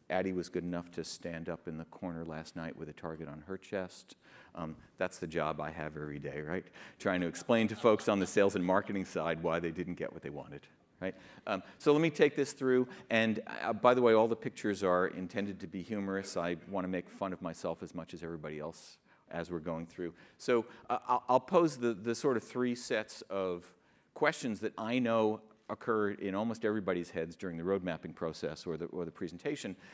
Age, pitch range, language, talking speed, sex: 50-69, 90-110 Hz, English, 220 wpm, male